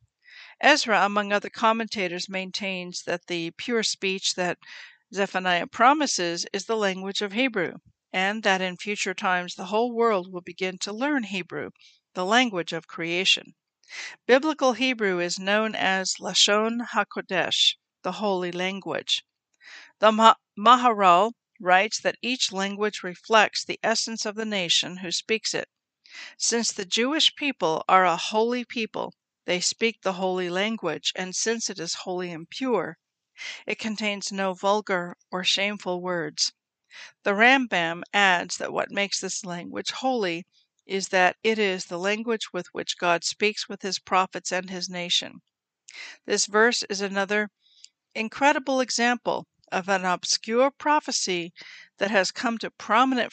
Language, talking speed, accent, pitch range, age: English, 140 wpm, American, 180-225 Hz, 50-69